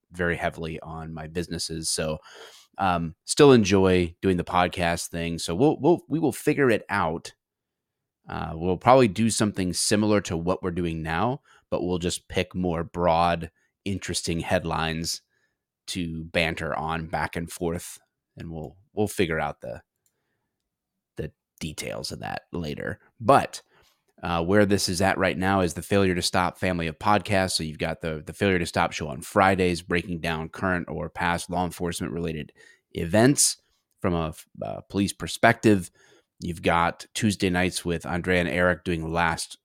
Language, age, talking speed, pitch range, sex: English, 30-49, 165 wpm, 85-95 Hz, male